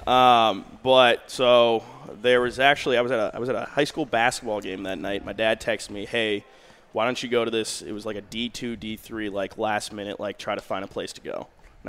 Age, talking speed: 20-39, 235 wpm